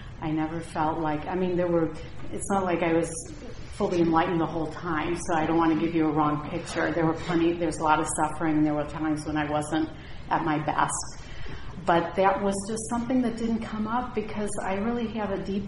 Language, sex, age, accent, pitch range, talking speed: English, female, 40-59, American, 155-185 Hz, 230 wpm